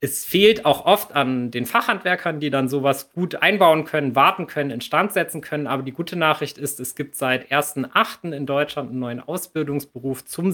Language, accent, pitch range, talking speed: German, German, 135-160 Hz, 195 wpm